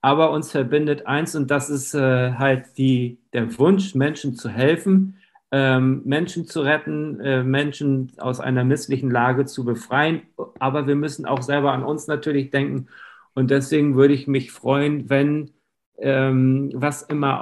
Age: 50-69